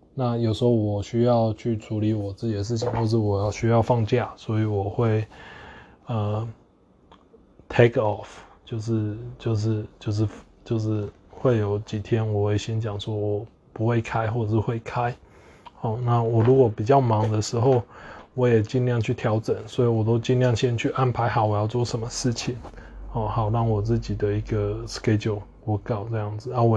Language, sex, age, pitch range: Chinese, male, 20-39, 105-120 Hz